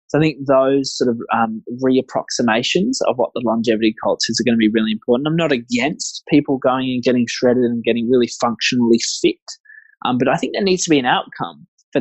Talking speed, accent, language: 220 wpm, Australian, English